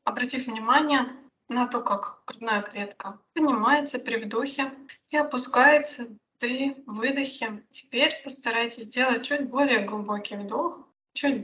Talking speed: 115 wpm